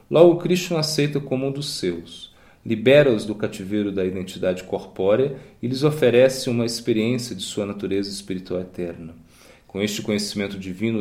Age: 40-59